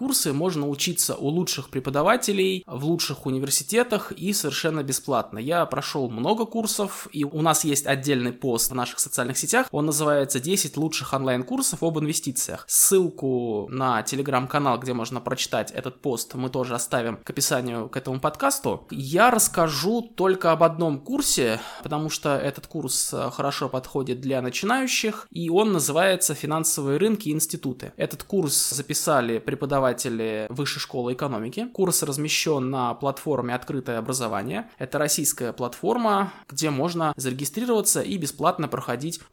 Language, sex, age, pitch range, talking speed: Russian, male, 20-39, 130-170 Hz, 140 wpm